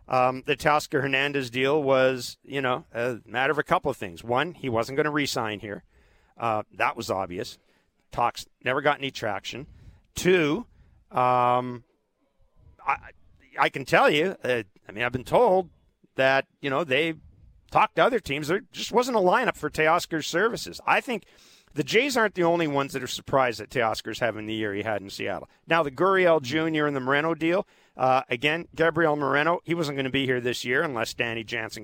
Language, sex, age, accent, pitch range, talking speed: English, male, 40-59, American, 125-155 Hz, 195 wpm